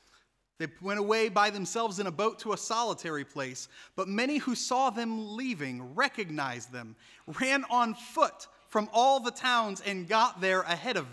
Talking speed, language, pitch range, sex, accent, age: 175 wpm, English, 150-220 Hz, male, American, 30-49